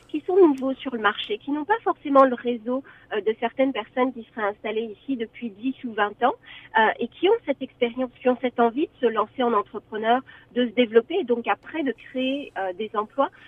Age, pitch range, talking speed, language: 40-59, 225-275 Hz, 215 wpm, French